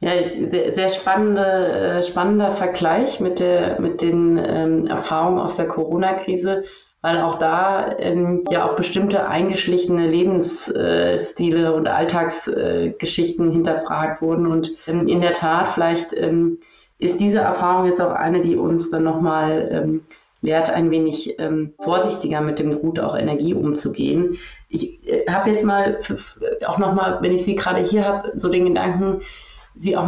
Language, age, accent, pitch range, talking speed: German, 30-49, German, 165-190 Hz, 150 wpm